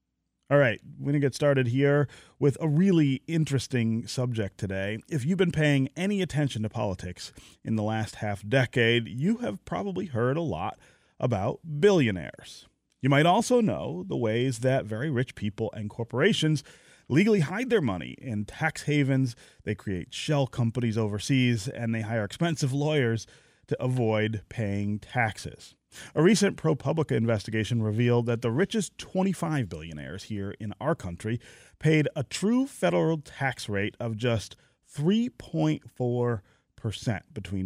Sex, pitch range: male, 110-150 Hz